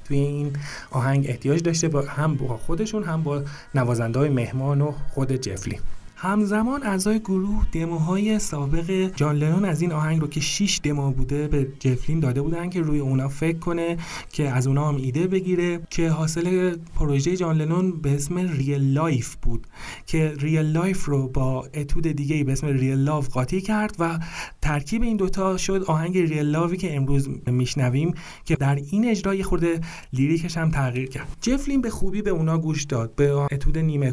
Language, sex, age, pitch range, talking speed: Persian, male, 30-49, 140-175 Hz, 175 wpm